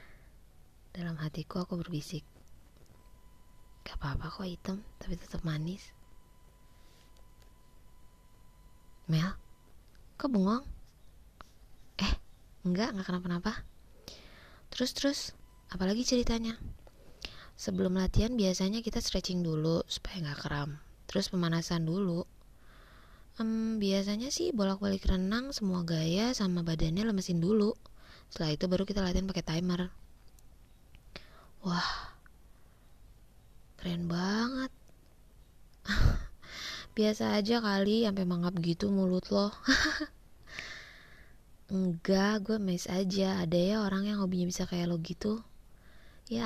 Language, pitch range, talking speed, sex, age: Indonesian, 165-210 Hz, 100 wpm, female, 20-39